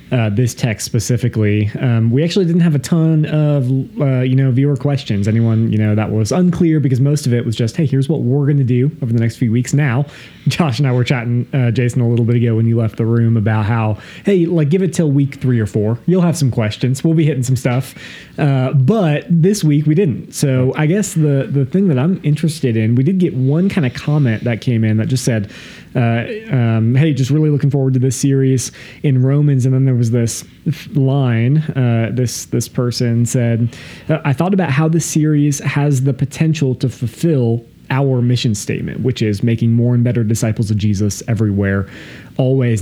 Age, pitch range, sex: 30-49, 120-145 Hz, male